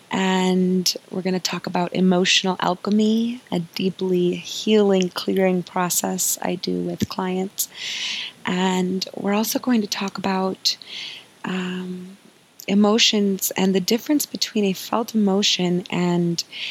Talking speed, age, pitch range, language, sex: 120 wpm, 20-39, 180-205 Hz, English, female